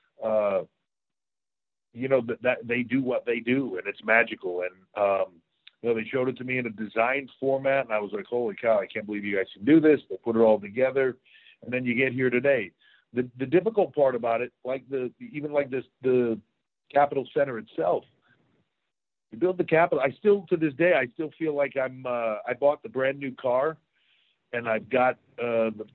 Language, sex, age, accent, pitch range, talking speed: English, male, 50-69, American, 110-135 Hz, 215 wpm